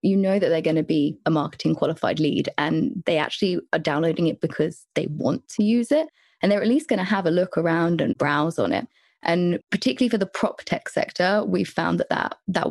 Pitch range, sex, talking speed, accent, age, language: 160-200 Hz, female, 235 wpm, British, 20-39, English